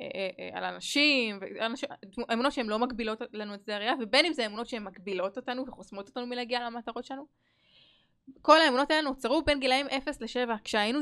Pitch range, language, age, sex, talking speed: 205-255 Hz, Hebrew, 20-39, female, 175 wpm